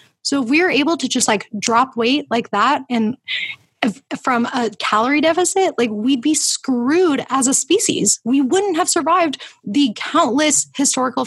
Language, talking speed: English, 165 wpm